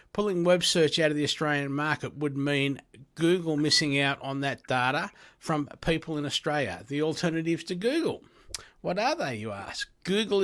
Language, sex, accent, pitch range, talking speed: English, male, Australian, 135-165 Hz, 170 wpm